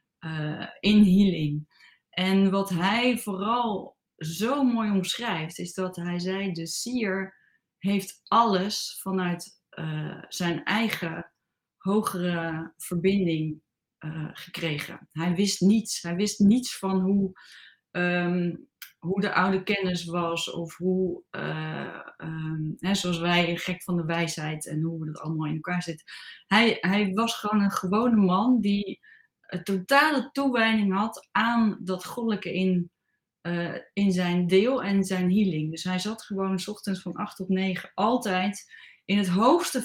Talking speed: 145 wpm